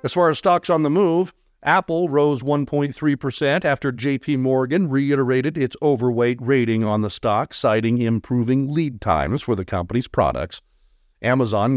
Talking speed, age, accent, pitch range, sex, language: 150 wpm, 50-69, American, 105-145 Hz, male, English